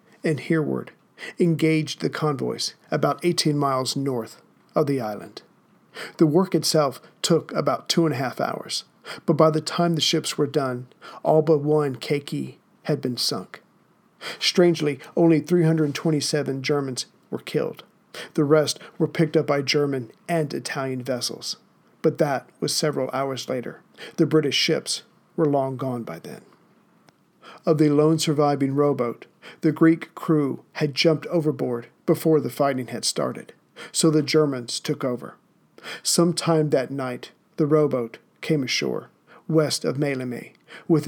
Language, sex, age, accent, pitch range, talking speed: English, male, 50-69, American, 135-160 Hz, 145 wpm